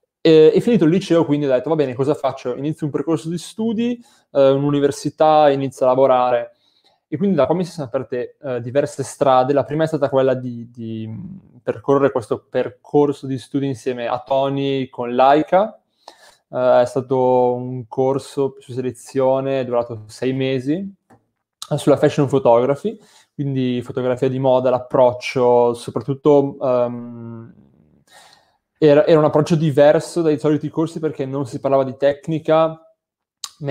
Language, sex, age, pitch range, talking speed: Italian, male, 20-39, 125-150 Hz, 155 wpm